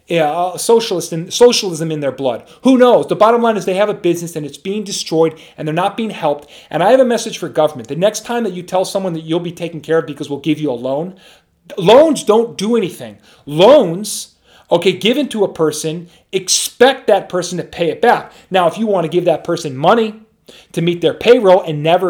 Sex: male